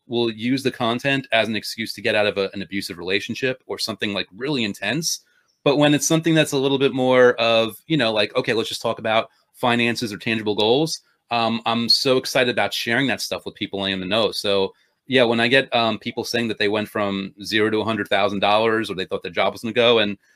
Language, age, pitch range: English, 30-49, 105-130 Hz